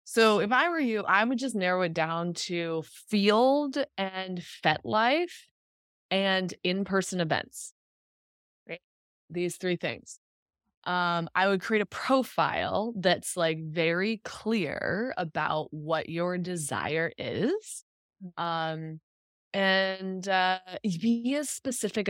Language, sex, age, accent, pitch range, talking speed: English, female, 20-39, American, 155-195 Hz, 120 wpm